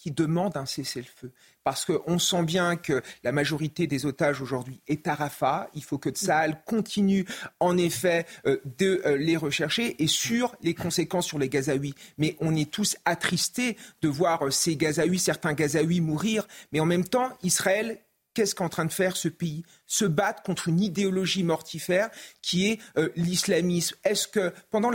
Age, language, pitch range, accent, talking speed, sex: 40-59, French, 165-215 Hz, French, 170 wpm, male